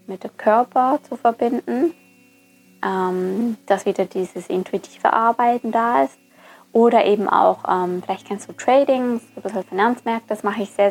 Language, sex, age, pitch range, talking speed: German, female, 20-39, 195-250 Hz, 150 wpm